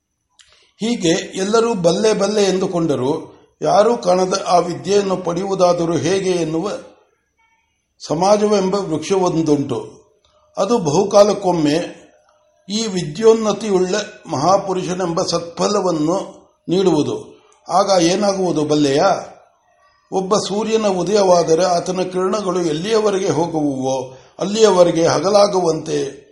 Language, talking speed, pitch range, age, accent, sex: Kannada, 75 wpm, 165-205 Hz, 60-79, native, male